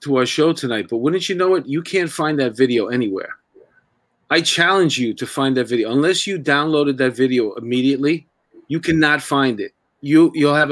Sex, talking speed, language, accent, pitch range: male, 195 wpm, English, American, 115-150 Hz